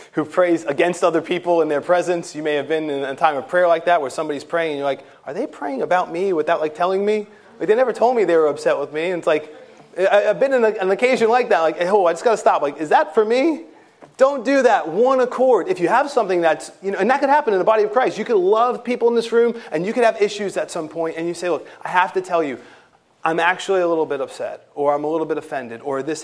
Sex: male